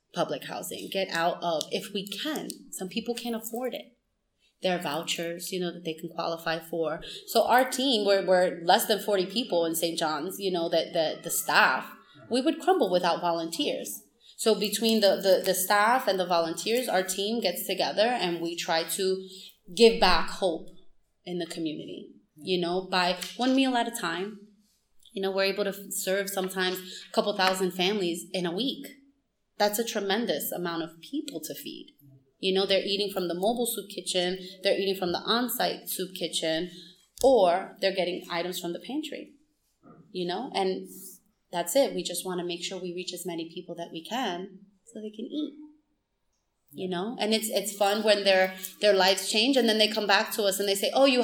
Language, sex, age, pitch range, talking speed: English, female, 20-39, 180-220 Hz, 195 wpm